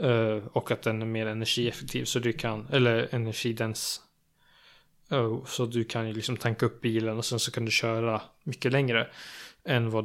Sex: male